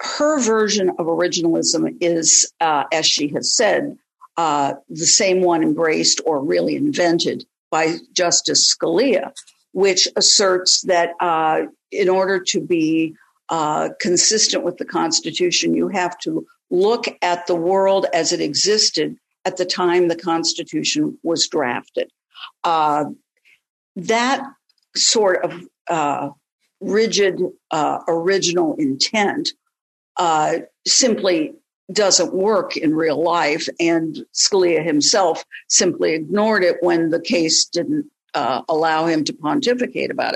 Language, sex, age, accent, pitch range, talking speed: English, female, 50-69, American, 170-270 Hz, 125 wpm